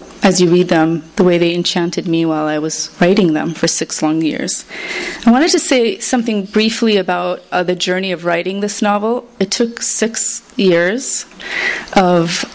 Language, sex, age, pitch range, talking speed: English, female, 30-49, 180-205 Hz, 175 wpm